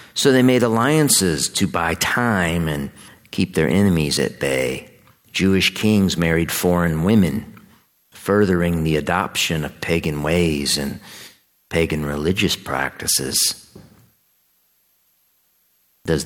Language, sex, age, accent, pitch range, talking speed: English, male, 50-69, American, 80-115 Hz, 105 wpm